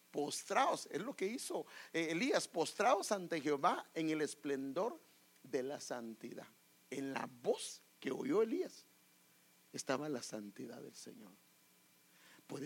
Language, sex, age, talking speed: English, male, 50-69, 130 wpm